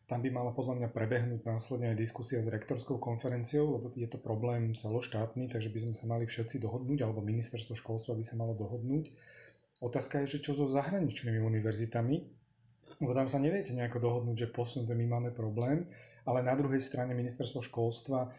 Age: 30-49